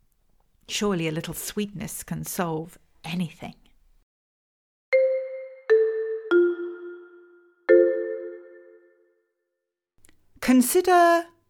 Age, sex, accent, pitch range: 40-59, female, British, 160-250 Hz